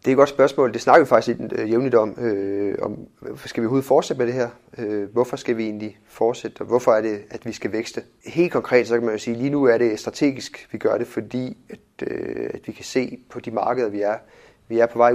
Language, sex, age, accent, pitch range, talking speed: Danish, male, 30-49, native, 110-125 Hz, 260 wpm